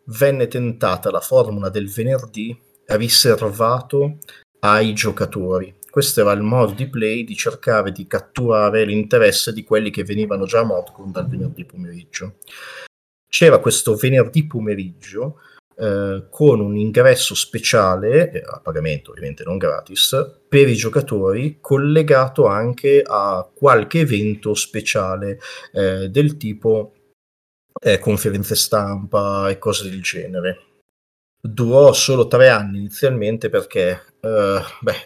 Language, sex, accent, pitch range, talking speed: Italian, male, native, 95-125 Hz, 125 wpm